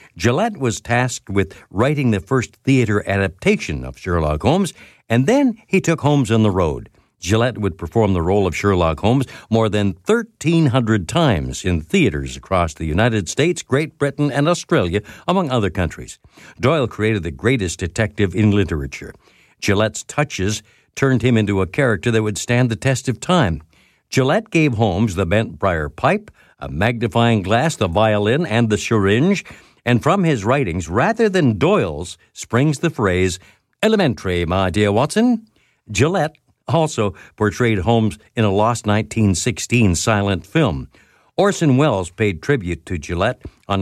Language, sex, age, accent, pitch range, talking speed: English, male, 60-79, American, 95-135 Hz, 155 wpm